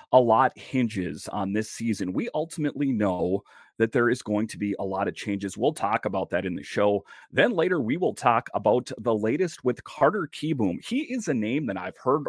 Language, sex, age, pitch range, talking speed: English, male, 30-49, 105-130 Hz, 215 wpm